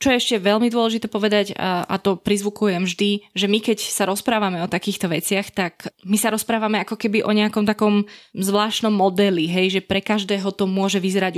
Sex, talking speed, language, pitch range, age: female, 190 wpm, Slovak, 180-210 Hz, 20-39